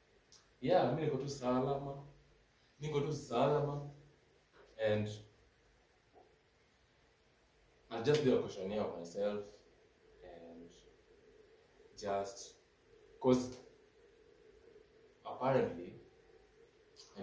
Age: 20-39